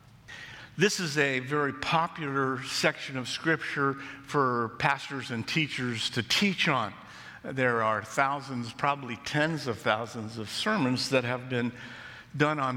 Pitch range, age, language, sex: 115-140 Hz, 50-69, English, male